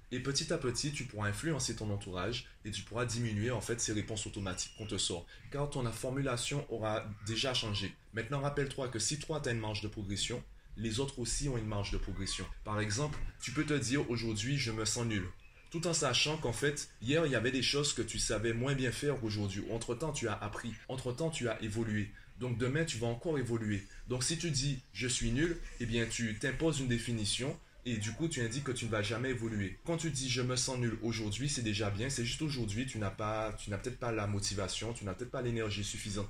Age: 20-39